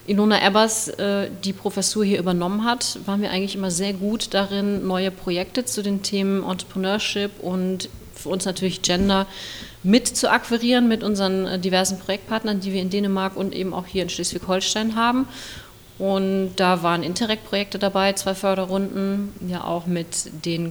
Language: German